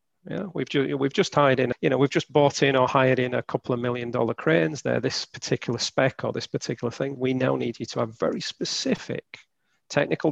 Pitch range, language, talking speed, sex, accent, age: 125-160 Hz, English, 220 wpm, male, British, 40-59